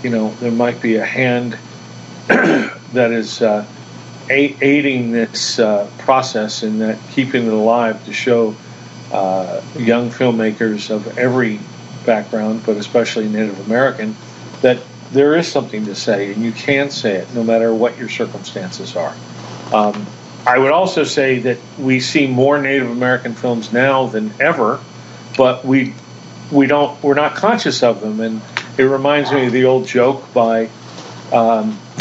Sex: male